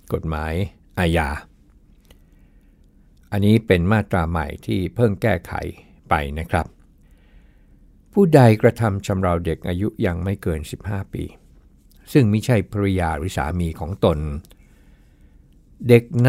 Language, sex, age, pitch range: Thai, male, 60-79, 75-105 Hz